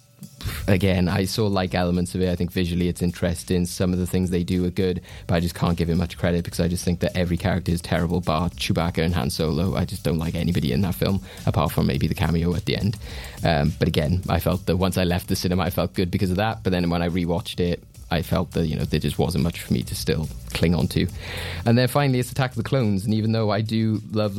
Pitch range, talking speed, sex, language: 85-105 Hz, 275 wpm, male, English